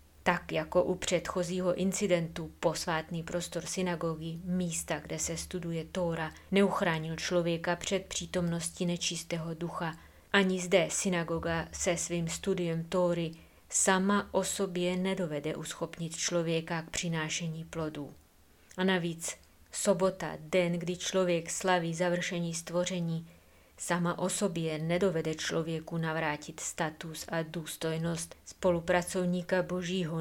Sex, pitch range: female, 165-180 Hz